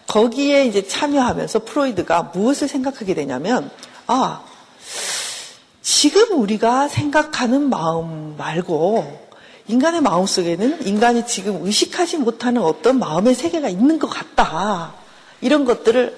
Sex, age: female, 50-69